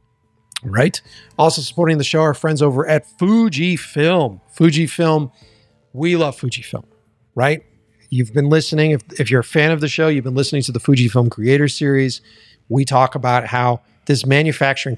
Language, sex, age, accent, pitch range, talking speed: English, male, 50-69, American, 115-150 Hz, 160 wpm